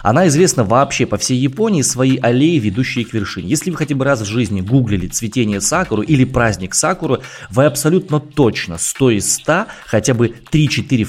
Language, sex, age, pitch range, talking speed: Russian, male, 20-39, 105-145 Hz, 180 wpm